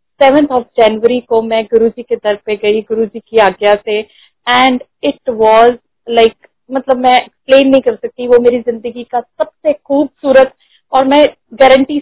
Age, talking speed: 30-49, 175 wpm